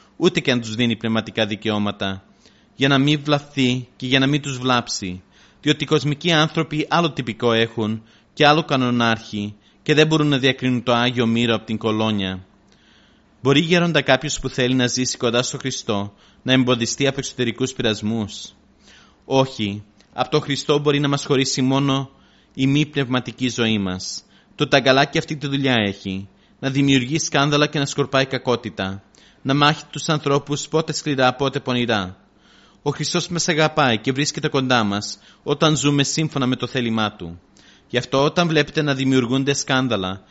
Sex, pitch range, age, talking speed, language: male, 115-145 Hz, 30-49, 165 wpm, Greek